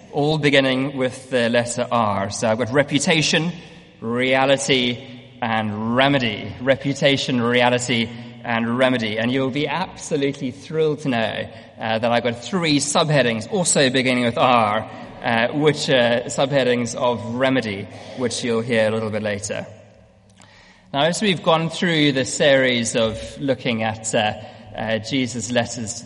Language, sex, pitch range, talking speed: English, male, 110-145 Hz, 145 wpm